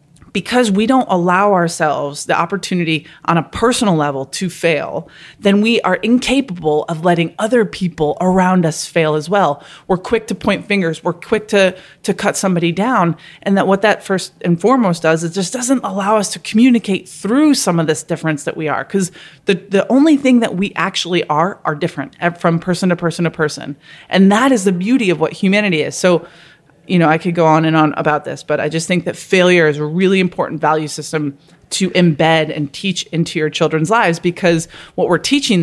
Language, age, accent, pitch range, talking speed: English, 20-39, American, 160-195 Hz, 210 wpm